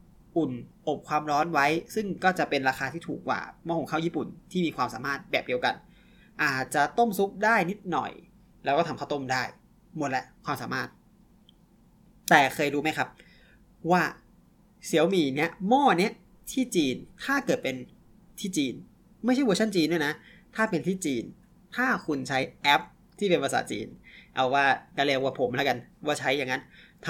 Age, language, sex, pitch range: 20-39, Thai, male, 145-190 Hz